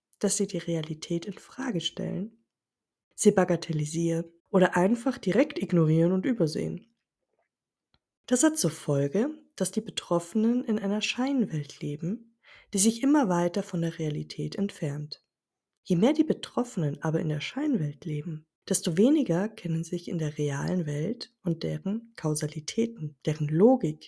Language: German